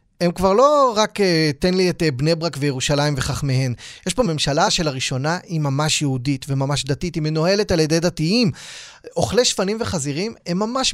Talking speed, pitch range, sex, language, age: 175 wpm, 145-195 Hz, male, Hebrew, 20-39